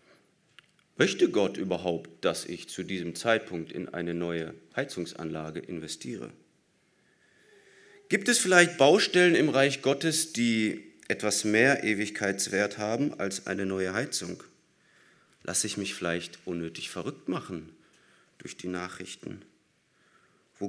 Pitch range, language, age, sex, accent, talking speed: 95-135 Hz, German, 40-59, male, German, 115 wpm